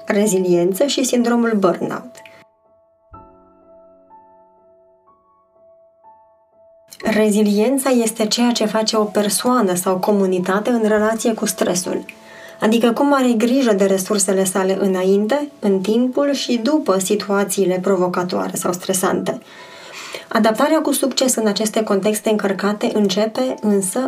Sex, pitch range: female, 195-235 Hz